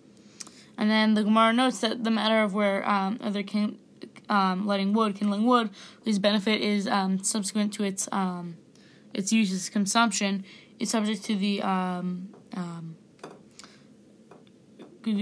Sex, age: female, 20-39